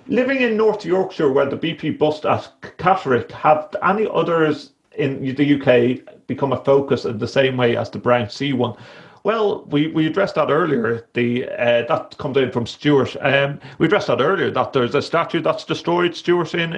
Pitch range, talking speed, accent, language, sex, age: 120-165 Hz, 195 wpm, British, English, male, 40-59